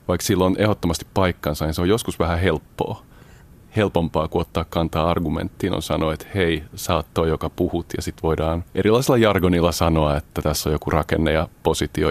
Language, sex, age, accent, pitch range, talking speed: Finnish, male, 30-49, native, 80-100 Hz, 190 wpm